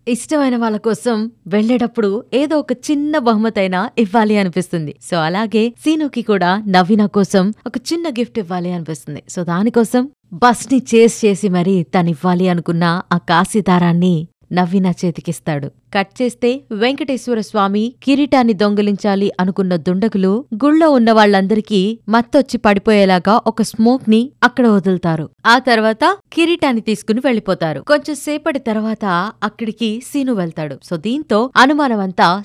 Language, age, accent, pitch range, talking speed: Telugu, 20-39, native, 190-245 Hz, 120 wpm